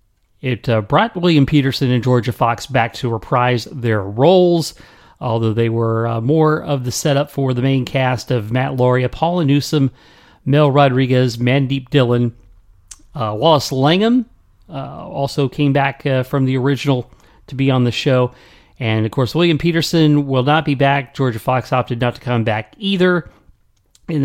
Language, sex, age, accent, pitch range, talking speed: English, male, 40-59, American, 120-155 Hz, 170 wpm